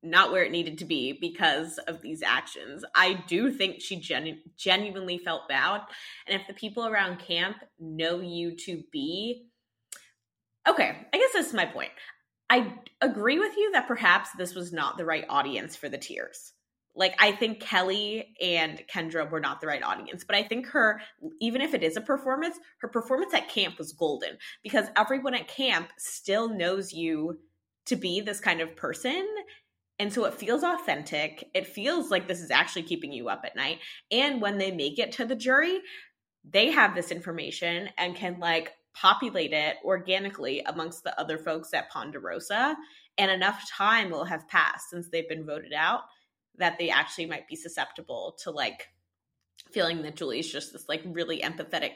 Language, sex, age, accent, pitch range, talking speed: English, female, 20-39, American, 170-235 Hz, 180 wpm